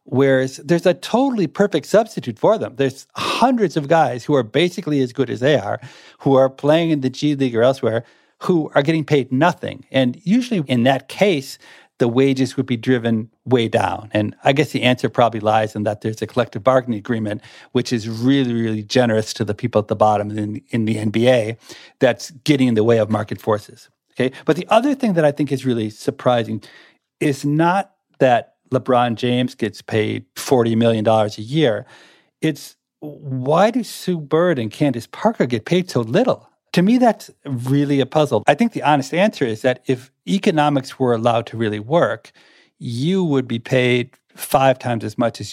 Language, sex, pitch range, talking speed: English, male, 115-150 Hz, 190 wpm